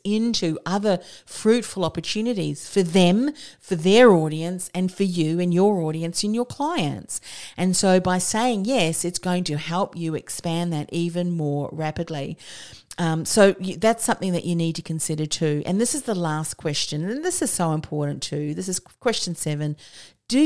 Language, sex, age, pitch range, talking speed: English, female, 40-59, 150-190 Hz, 175 wpm